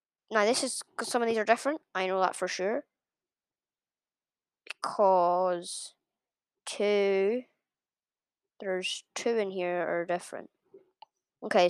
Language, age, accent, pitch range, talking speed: English, 10-29, British, 195-250 Hz, 120 wpm